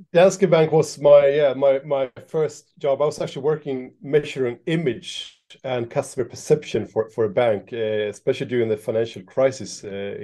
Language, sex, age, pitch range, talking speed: English, male, 30-49, 110-155 Hz, 170 wpm